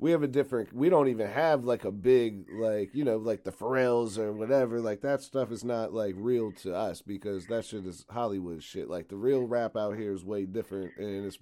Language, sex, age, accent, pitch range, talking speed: English, male, 30-49, American, 105-130 Hz, 235 wpm